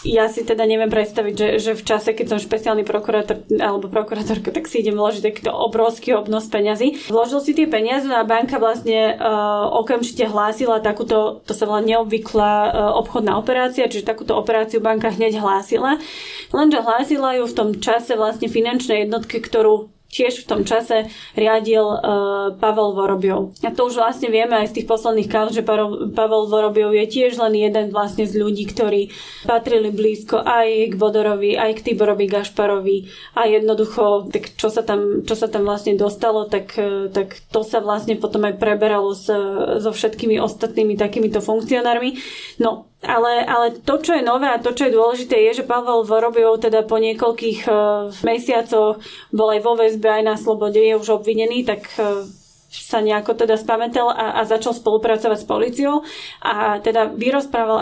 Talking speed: 170 wpm